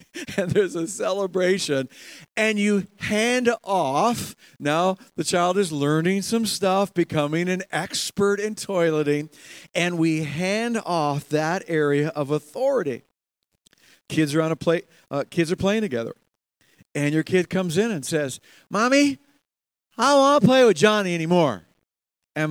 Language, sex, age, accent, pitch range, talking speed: English, male, 50-69, American, 155-215 Hz, 145 wpm